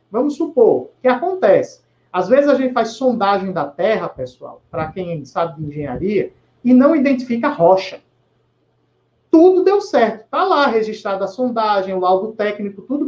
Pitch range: 195-260 Hz